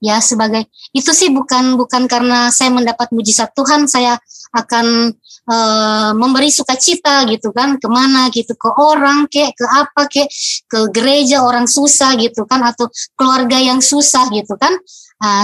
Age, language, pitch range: 20-39, Indonesian, 235-290 Hz